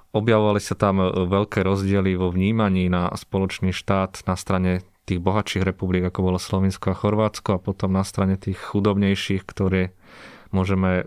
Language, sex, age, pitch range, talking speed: Slovak, male, 20-39, 90-100 Hz, 150 wpm